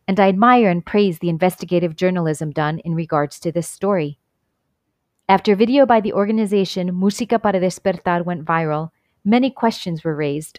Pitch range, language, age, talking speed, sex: 165-215 Hz, English, 30-49, 160 wpm, female